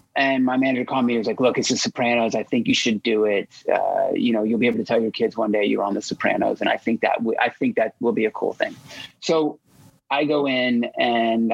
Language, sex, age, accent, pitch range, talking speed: English, male, 30-49, American, 115-145 Hz, 270 wpm